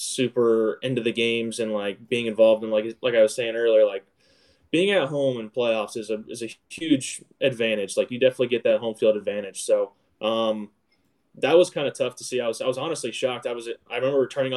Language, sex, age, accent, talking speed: English, male, 10-29, American, 225 wpm